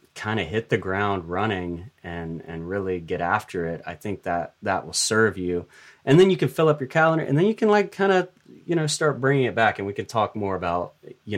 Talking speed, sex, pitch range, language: 250 wpm, male, 90-110 Hz, English